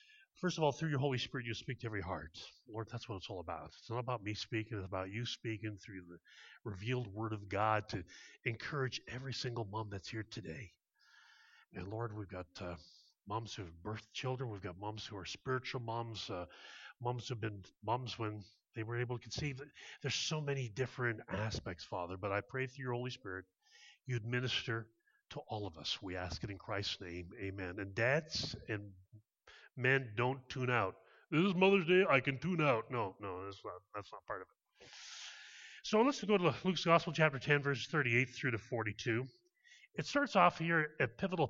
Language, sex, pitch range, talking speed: English, male, 110-160 Hz, 200 wpm